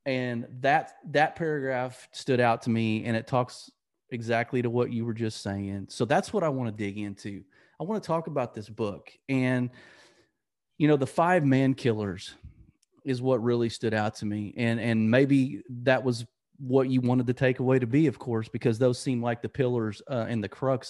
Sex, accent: male, American